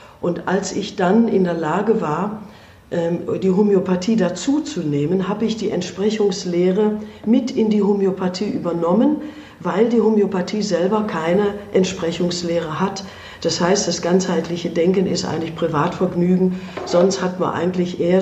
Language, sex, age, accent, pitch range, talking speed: German, female, 50-69, German, 175-215 Hz, 130 wpm